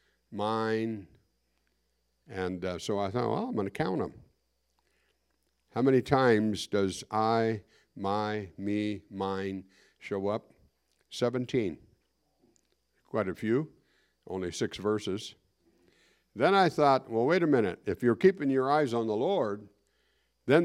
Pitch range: 100-135 Hz